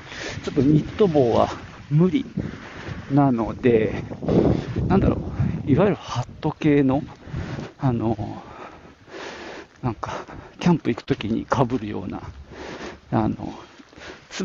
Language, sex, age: Japanese, male, 50-69